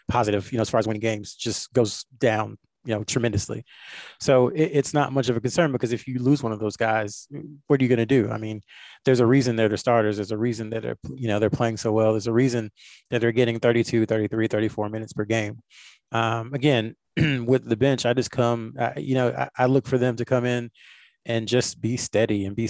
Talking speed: 240 wpm